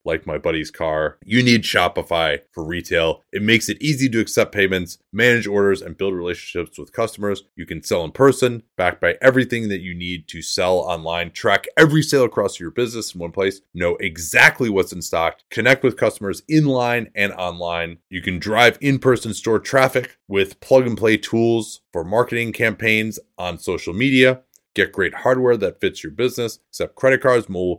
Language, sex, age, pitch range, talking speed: English, male, 30-49, 90-125 Hz, 185 wpm